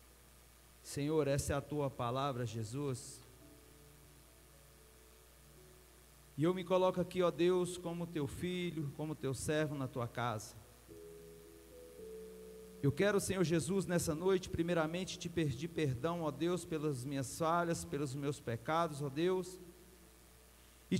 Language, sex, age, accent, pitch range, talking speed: Portuguese, male, 40-59, Brazilian, 120-190 Hz, 125 wpm